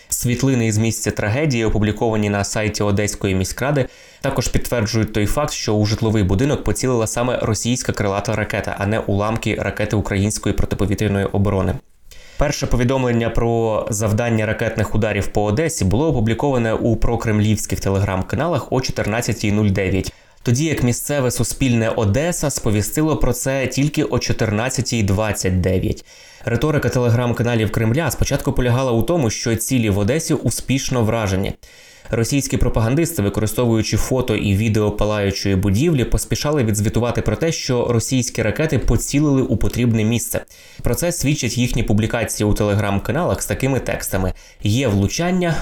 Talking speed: 130 wpm